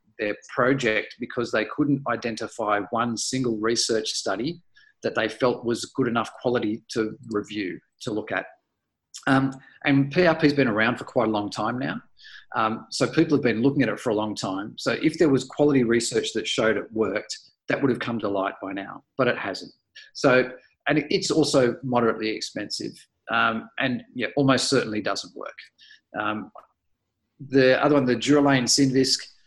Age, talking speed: 40-59, 175 wpm